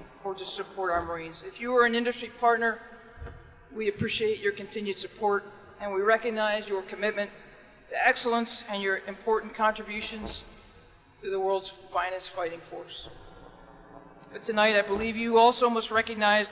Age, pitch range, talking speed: 40-59, 195-230 Hz, 150 wpm